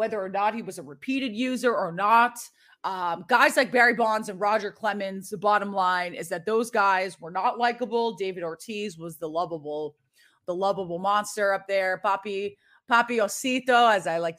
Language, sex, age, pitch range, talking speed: English, female, 30-49, 195-245 Hz, 185 wpm